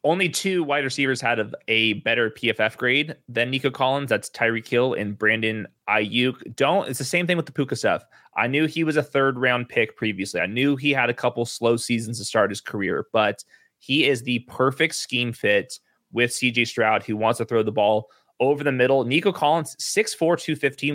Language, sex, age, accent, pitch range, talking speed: English, male, 20-39, American, 120-155 Hz, 205 wpm